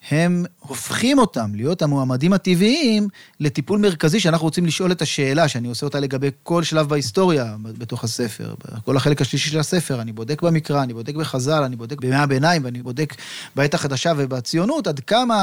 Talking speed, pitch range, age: 170 wpm, 140-180 Hz, 30-49